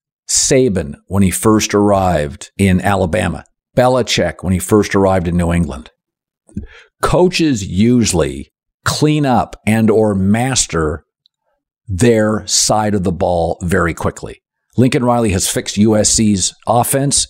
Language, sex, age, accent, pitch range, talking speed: English, male, 50-69, American, 100-130 Hz, 120 wpm